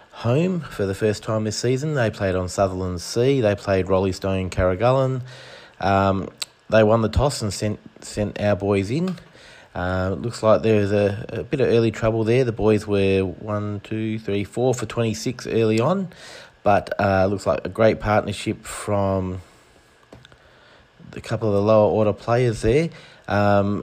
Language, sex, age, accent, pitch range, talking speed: English, male, 30-49, Australian, 95-115 Hz, 170 wpm